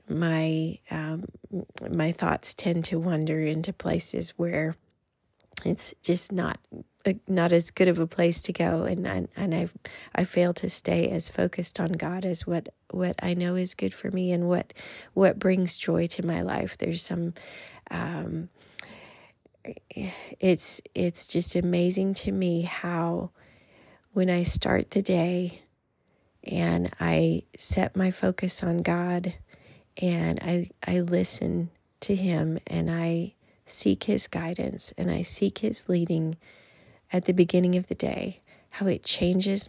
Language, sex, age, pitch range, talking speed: English, female, 30-49, 170-185 Hz, 145 wpm